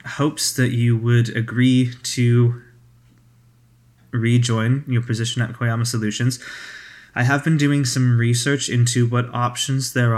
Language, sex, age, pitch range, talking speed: English, male, 20-39, 110-125 Hz, 130 wpm